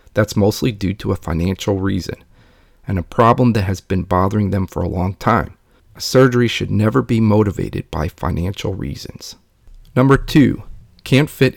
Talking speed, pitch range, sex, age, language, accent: 165 wpm, 95-120 Hz, male, 40-59, English, American